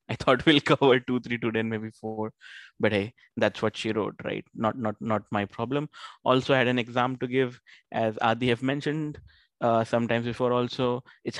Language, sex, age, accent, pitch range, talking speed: English, male, 20-39, Indian, 115-135 Hz, 200 wpm